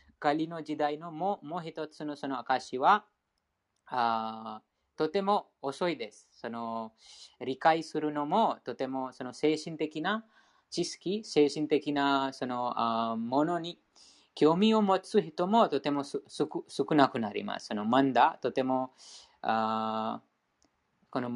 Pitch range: 115-165 Hz